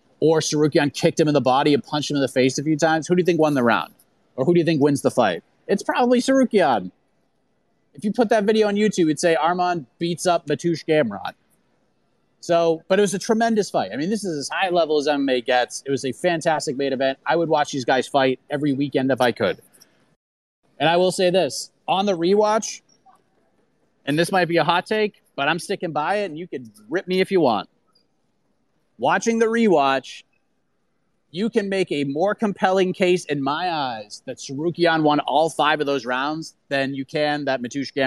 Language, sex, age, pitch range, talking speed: English, male, 30-49, 145-190 Hz, 215 wpm